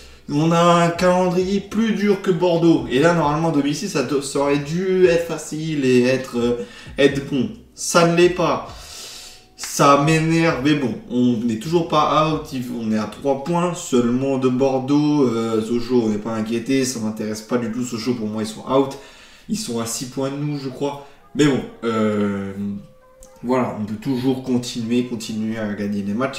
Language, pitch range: French, 120-150 Hz